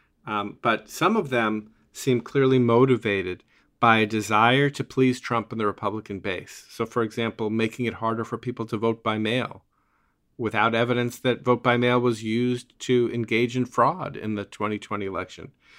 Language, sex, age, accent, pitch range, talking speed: English, male, 40-59, American, 105-125 Hz, 175 wpm